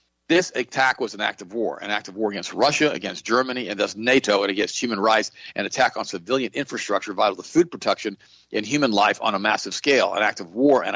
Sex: male